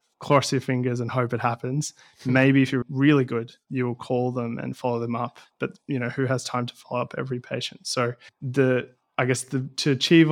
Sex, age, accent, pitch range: male, 20-39, Australian, 120-135 Hz